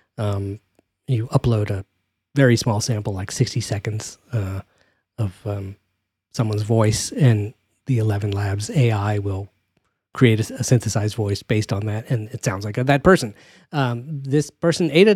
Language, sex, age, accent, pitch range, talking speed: English, male, 30-49, American, 105-130 Hz, 155 wpm